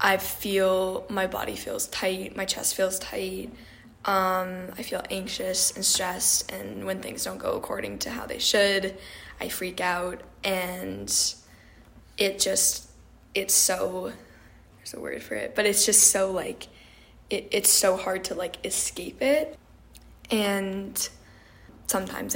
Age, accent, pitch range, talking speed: 10-29, American, 185-210 Hz, 140 wpm